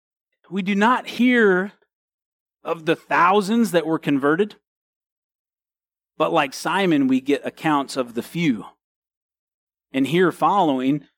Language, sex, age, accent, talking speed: English, male, 40-59, American, 120 wpm